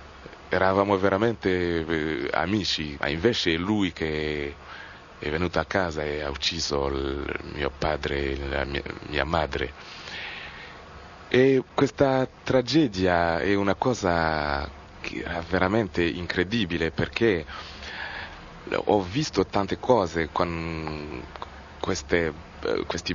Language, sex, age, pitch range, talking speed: Italian, male, 30-49, 80-95 Hz, 100 wpm